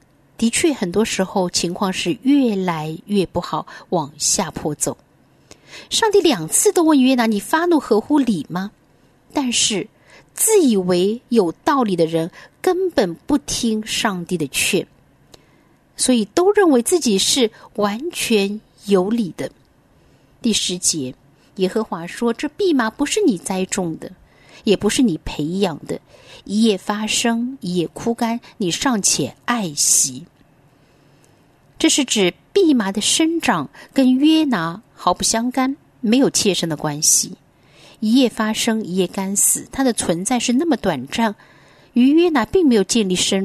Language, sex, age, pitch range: Chinese, female, 50-69, 175-255 Hz